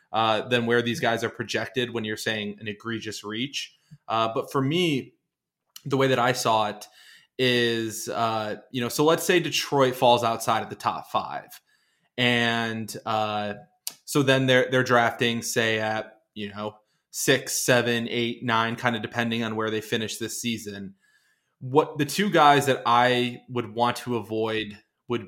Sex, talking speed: male, 170 wpm